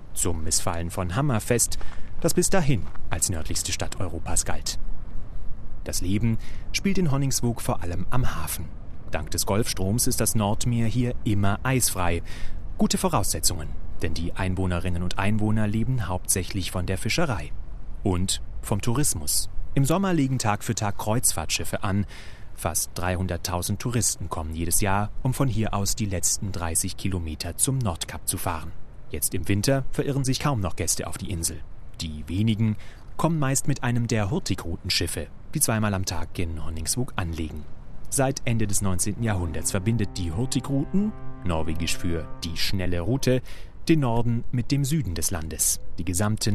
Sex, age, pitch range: male, 30-49, 85-115 Hz